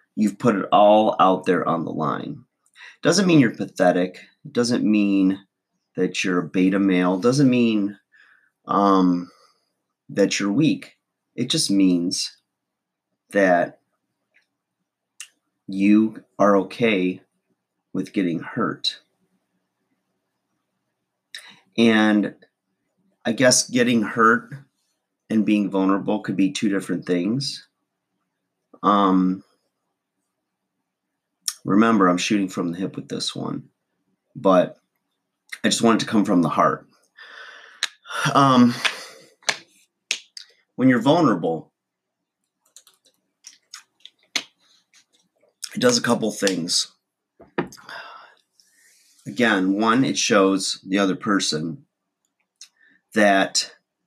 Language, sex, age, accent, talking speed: English, male, 30-49, American, 95 wpm